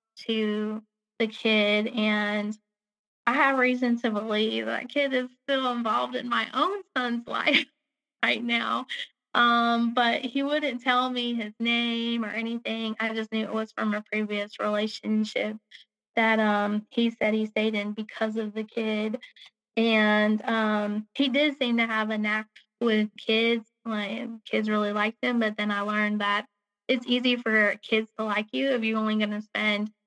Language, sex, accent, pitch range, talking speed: English, female, American, 210-240 Hz, 170 wpm